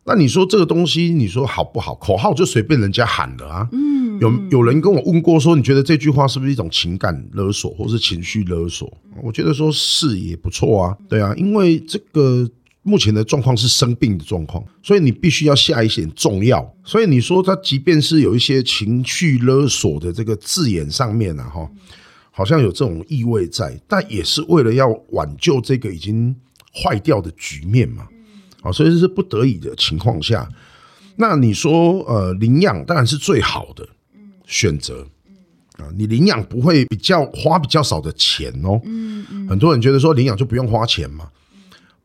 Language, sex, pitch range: Chinese, male, 105-155 Hz